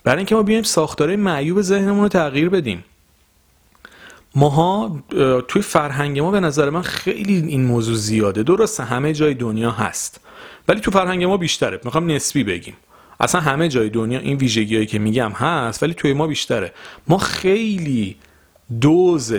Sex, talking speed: male, 155 wpm